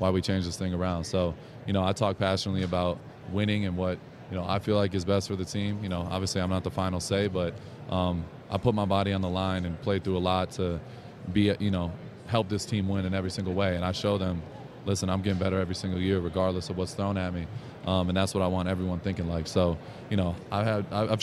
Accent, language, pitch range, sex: American, English, 95-105 Hz, male